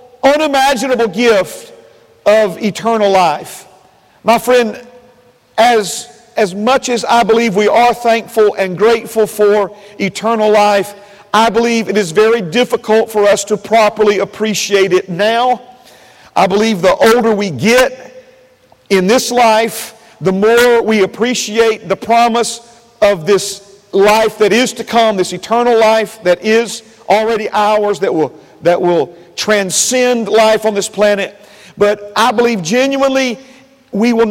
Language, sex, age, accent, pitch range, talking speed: English, male, 50-69, American, 200-240 Hz, 135 wpm